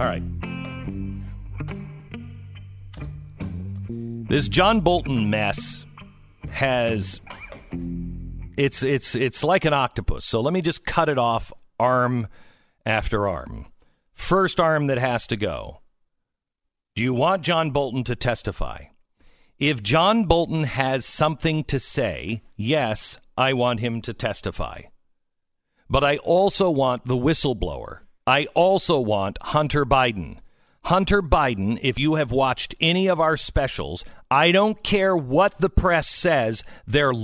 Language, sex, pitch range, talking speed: English, male, 115-175 Hz, 125 wpm